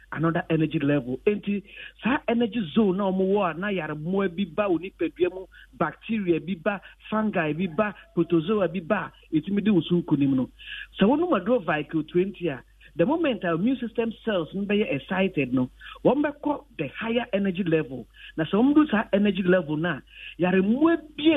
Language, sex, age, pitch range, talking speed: English, male, 50-69, 160-220 Hz, 180 wpm